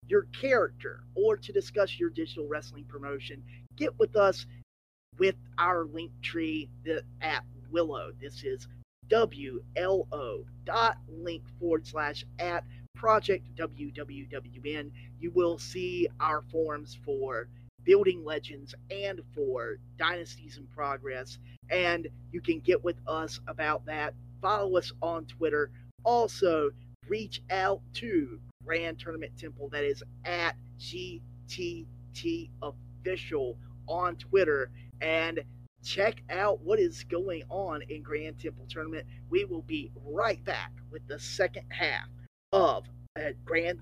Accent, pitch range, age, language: American, 120-165 Hz, 30-49, English